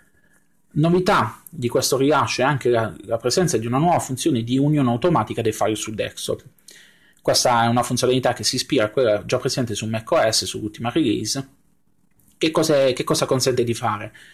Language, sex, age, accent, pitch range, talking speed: Italian, male, 30-49, native, 115-135 Hz, 170 wpm